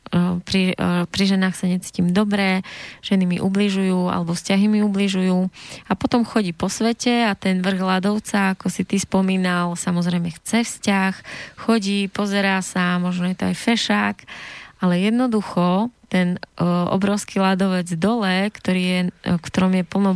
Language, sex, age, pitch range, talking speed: Slovak, female, 20-39, 180-200 Hz, 150 wpm